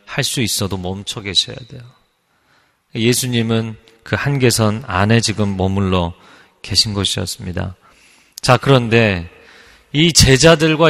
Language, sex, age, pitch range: Korean, male, 30-49, 100-130 Hz